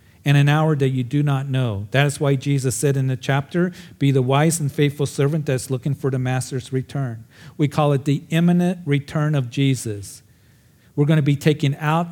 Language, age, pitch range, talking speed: English, 50-69, 125-150 Hz, 205 wpm